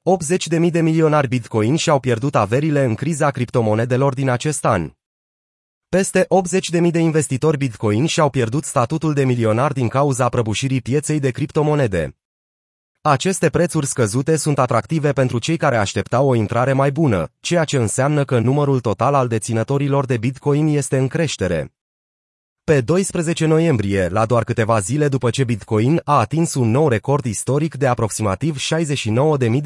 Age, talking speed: 30-49, 155 wpm